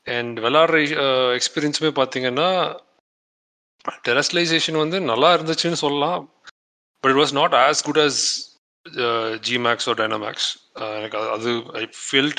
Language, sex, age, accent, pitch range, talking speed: Tamil, male, 30-49, native, 120-145 Hz, 115 wpm